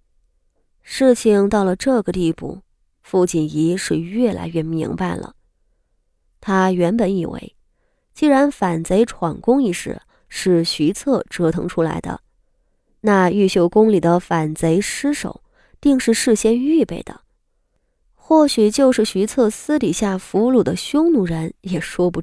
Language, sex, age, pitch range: Chinese, female, 20-39, 175-235 Hz